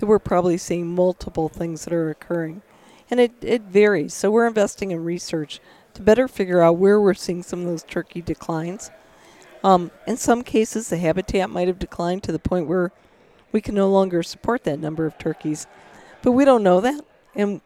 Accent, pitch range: American, 170-205 Hz